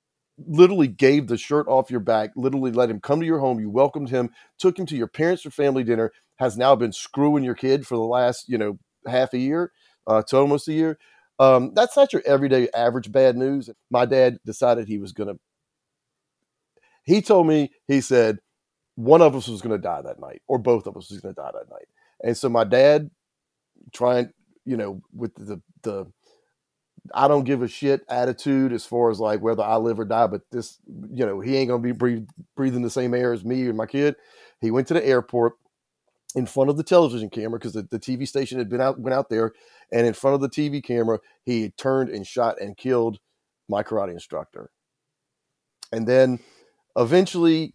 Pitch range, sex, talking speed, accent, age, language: 115-140 Hz, male, 205 wpm, American, 40-59, English